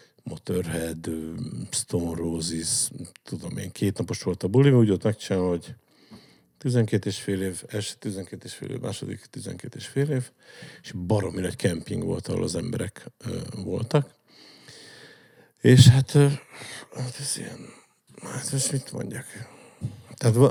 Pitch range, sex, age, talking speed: 100-130 Hz, male, 50-69, 140 wpm